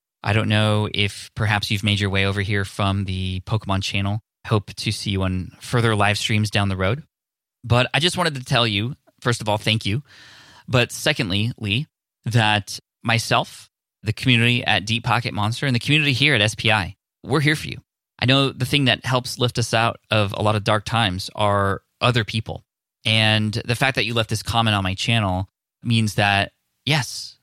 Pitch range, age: 100-120 Hz, 20-39